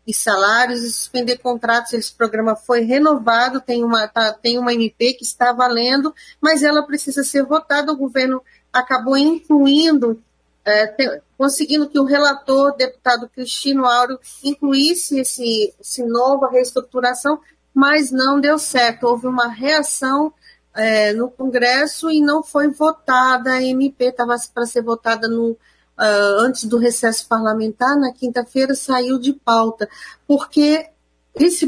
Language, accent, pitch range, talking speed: Portuguese, Brazilian, 230-275 Hz, 140 wpm